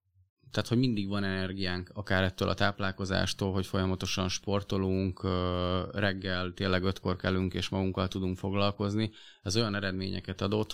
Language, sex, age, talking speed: Hungarian, male, 20-39, 135 wpm